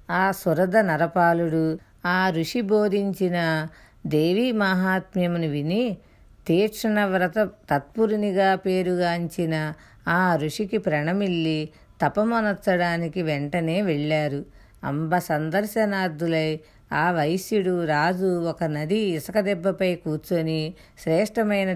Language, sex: Telugu, female